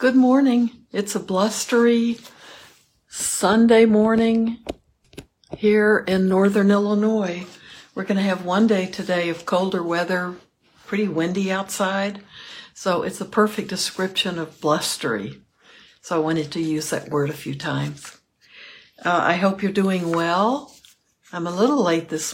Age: 60-79